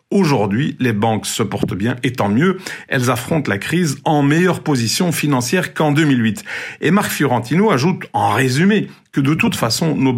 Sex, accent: male, French